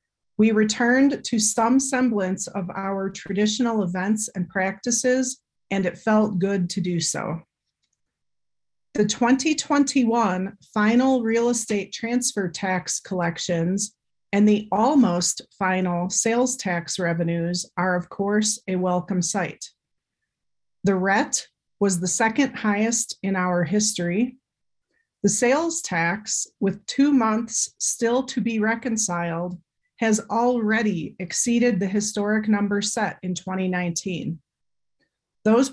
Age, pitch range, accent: 40-59, 185-230 Hz, American